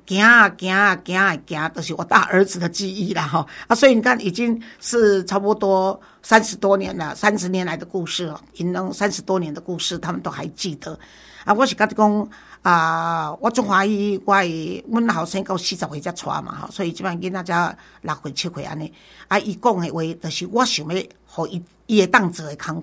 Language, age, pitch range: Chinese, 50-69, 175-225 Hz